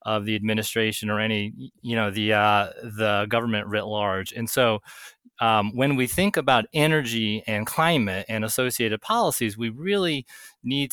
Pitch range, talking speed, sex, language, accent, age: 110-135 Hz, 160 wpm, male, English, American, 30-49